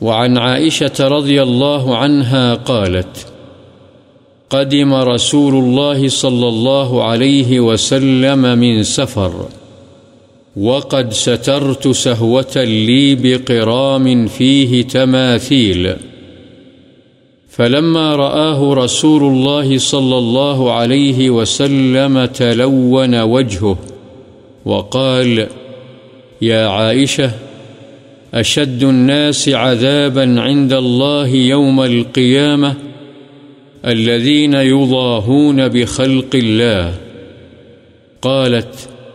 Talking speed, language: 70 wpm, Urdu